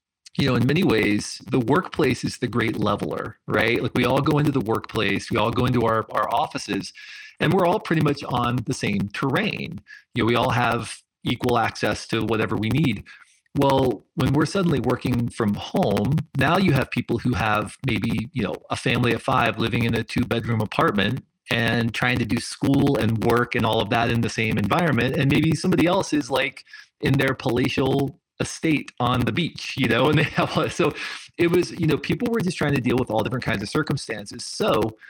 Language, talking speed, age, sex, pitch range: English, 210 wpm, 40-59, male, 115-150 Hz